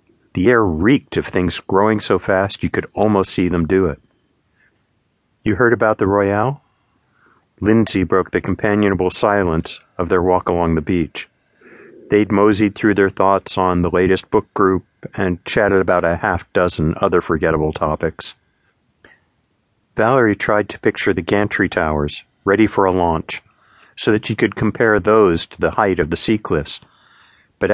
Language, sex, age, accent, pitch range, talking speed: English, male, 50-69, American, 85-105 Hz, 160 wpm